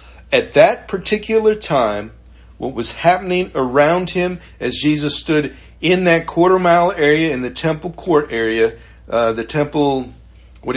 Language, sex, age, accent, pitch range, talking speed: English, male, 50-69, American, 90-145 Hz, 145 wpm